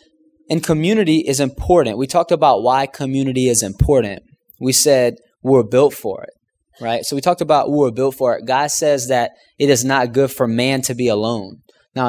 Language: English